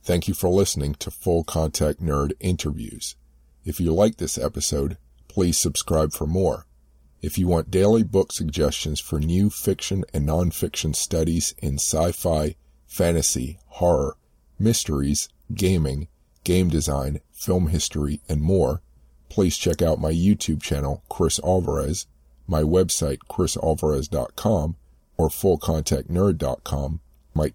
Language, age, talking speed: English, 50-69, 120 wpm